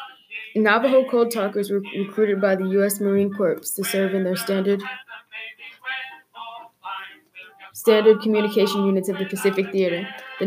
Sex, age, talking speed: female, 20-39, 130 wpm